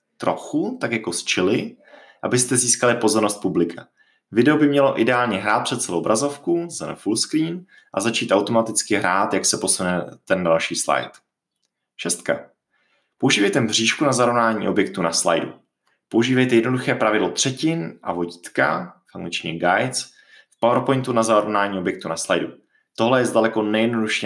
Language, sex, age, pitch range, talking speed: Czech, male, 20-39, 95-125 Hz, 140 wpm